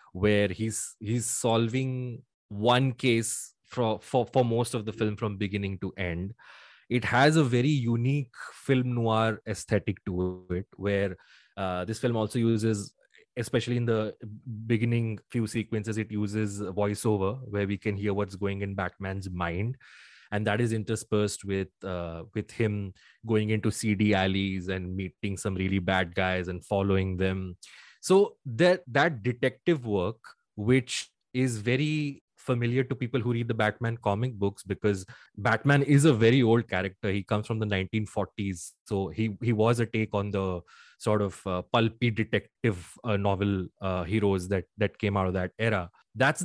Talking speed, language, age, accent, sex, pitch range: 165 wpm, English, 20-39, Indian, male, 100-120 Hz